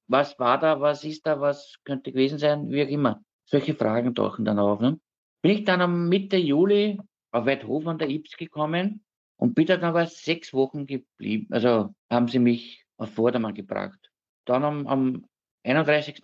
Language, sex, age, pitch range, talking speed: German, male, 50-69, 120-150 Hz, 175 wpm